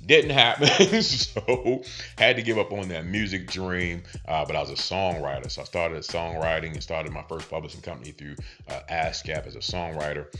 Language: English